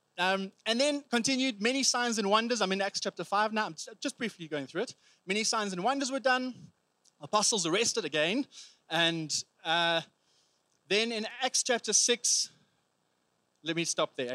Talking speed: 165 wpm